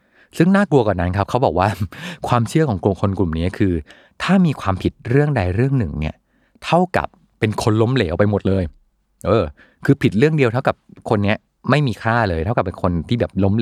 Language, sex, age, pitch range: Thai, male, 30-49, 85-120 Hz